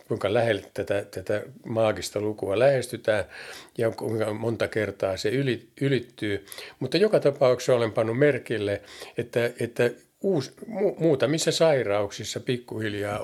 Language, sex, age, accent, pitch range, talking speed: Finnish, male, 50-69, native, 105-140 Hz, 115 wpm